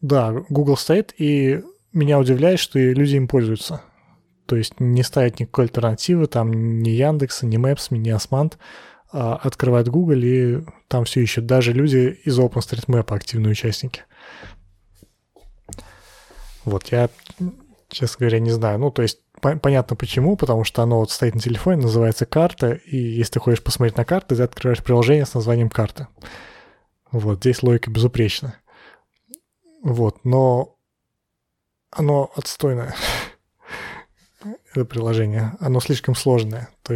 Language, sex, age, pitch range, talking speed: Russian, male, 20-39, 115-145 Hz, 135 wpm